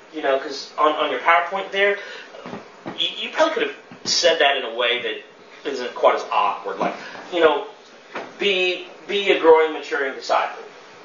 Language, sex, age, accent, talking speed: English, male, 30-49, American, 175 wpm